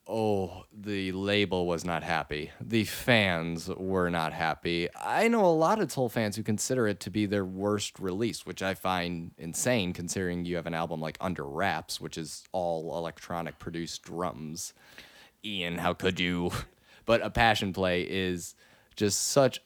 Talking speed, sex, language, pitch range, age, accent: 170 wpm, male, English, 90-115 Hz, 30-49, American